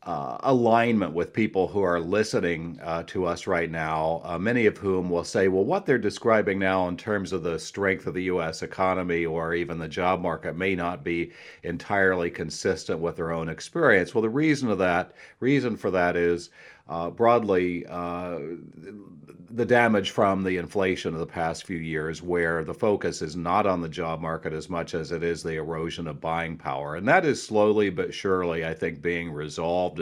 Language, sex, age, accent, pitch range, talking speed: English, male, 40-59, American, 85-110 Hz, 195 wpm